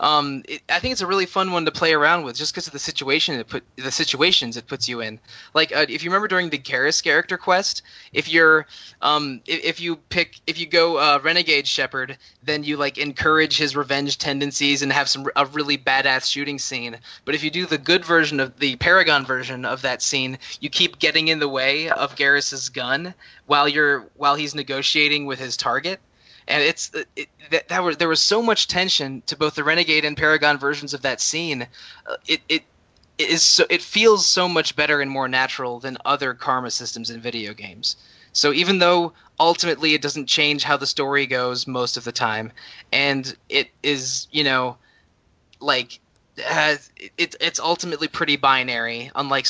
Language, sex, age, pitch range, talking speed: English, male, 20-39, 130-155 Hz, 200 wpm